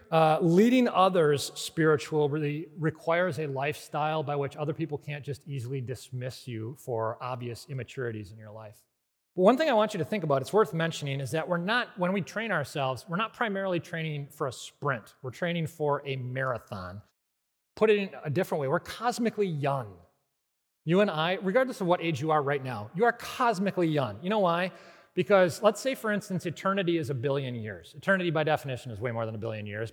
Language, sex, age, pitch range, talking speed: English, male, 30-49, 130-180 Hz, 205 wpm